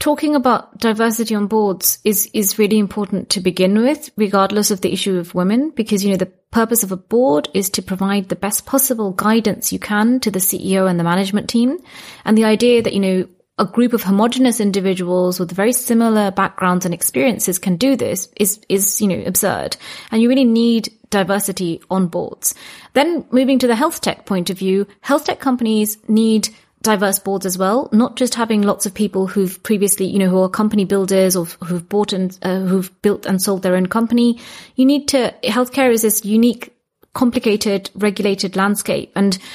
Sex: female